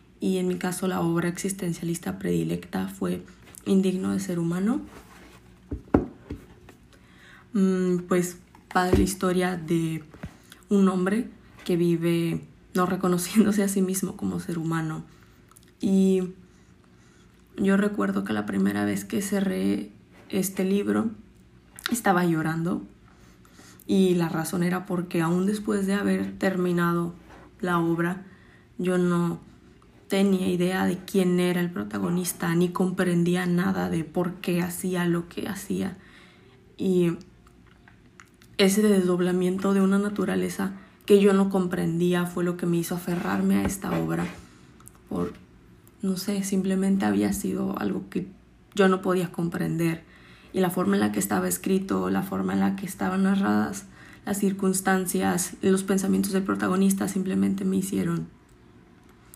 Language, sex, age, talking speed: Spanish, female, 20-39, 130 wpm